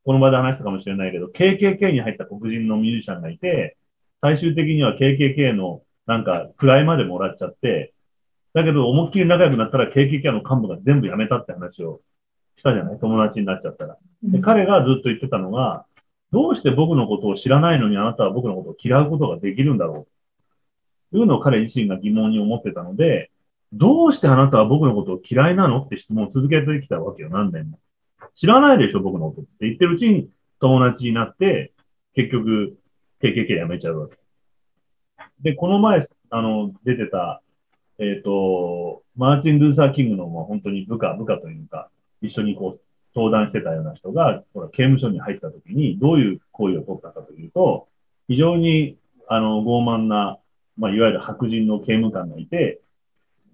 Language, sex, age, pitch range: Japanese, male, 30-49, 105-155 Hz